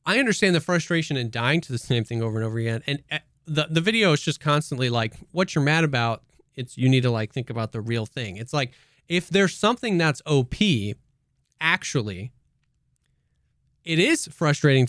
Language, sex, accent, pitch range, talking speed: English, male, American, 125-175 Hz, 190 wpm